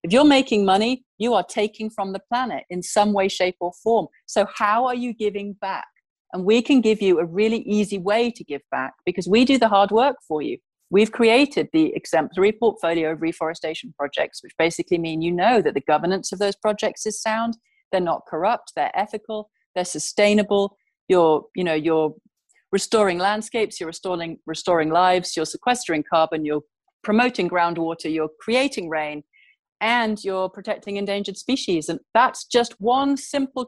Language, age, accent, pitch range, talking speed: English, 40-59, British, 175-235 Hz, 175 wpm